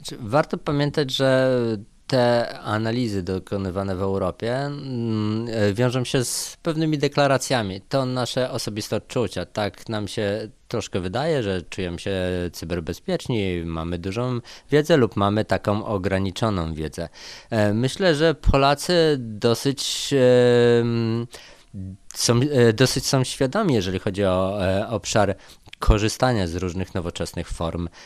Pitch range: 95-125 Hz